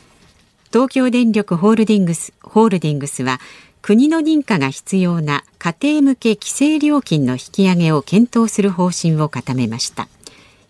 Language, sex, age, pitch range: Japanese, female, 50-69, 150-230 Hz